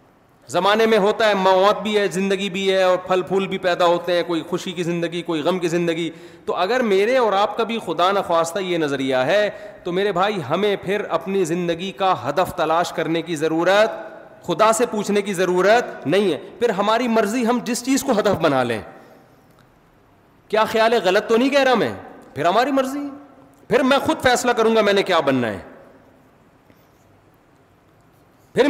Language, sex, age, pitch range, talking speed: Urdu, male, 30-49, 160-205 Hz, 190 wpm